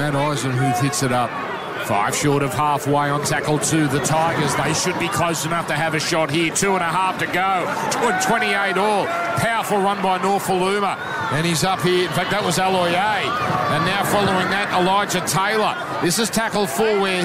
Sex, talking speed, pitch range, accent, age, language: male, 195 wpm, 180-270 Hz, Australian, 50-69, English